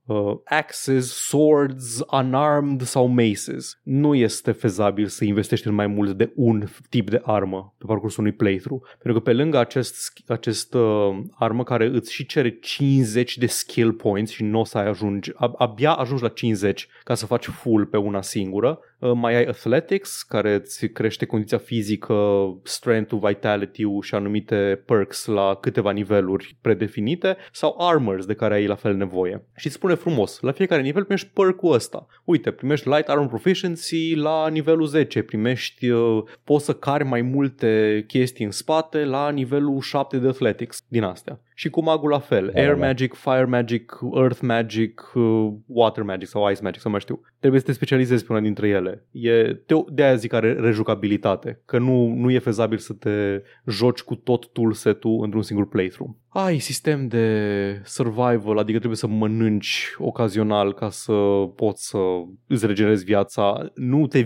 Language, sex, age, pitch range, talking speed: Romanian, male, 20-39, 105-130 Hz, 165 wpm